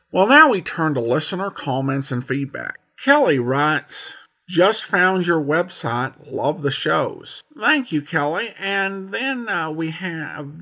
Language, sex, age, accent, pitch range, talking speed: English, male, 50-69, American, 130-165 Hz, 145 wpm